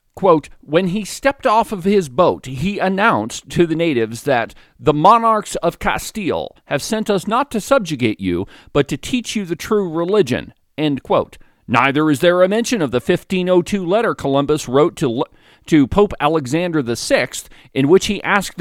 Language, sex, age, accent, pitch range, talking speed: English, male, 50-69, American, 150-220 Hz, 165 wpm